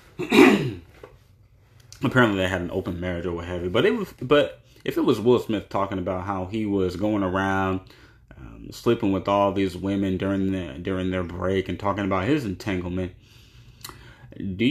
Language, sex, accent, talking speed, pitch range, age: English, male, American, 165 wpm, 90-115 Hz, 30-49